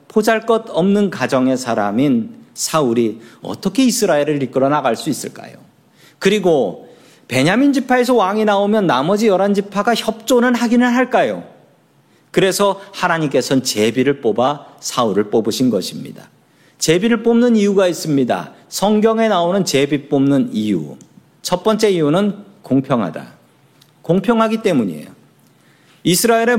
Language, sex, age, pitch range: Korean, male, 40-59, 125-205 Hz